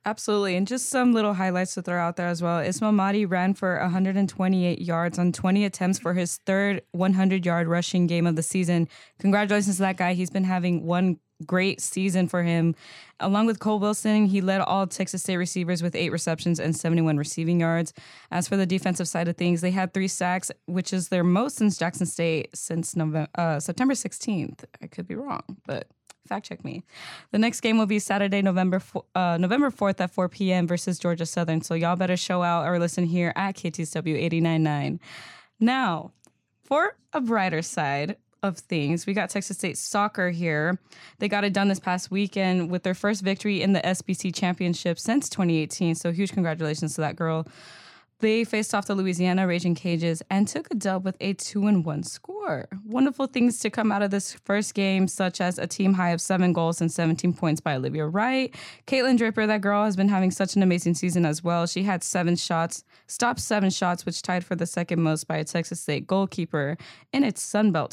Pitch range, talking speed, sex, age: 170-200 Hz, 200 wpm, female, 10-29